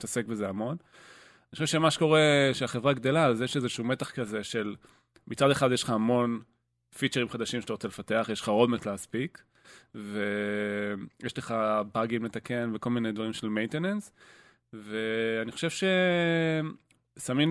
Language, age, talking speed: Hebrew, 20-39, 140 wpm